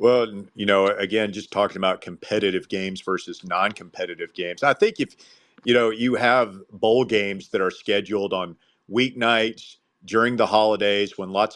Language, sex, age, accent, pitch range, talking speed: English, male, 40-59, American, 95-110 Hz, 160 wpm